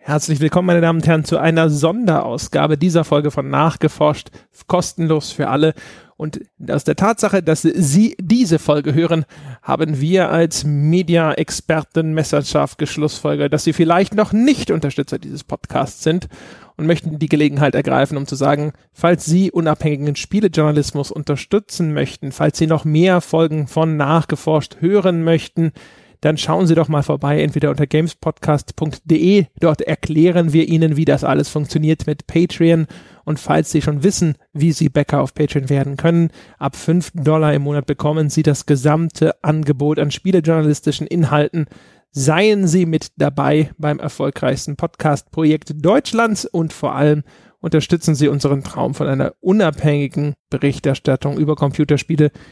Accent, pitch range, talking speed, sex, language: German, 145-165 Hz, 145 wpm, male, German